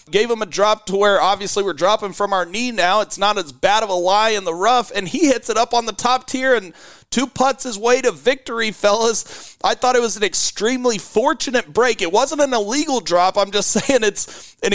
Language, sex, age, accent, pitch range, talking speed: English, male, 30-49, American, 185-225 Hz, 235 wpm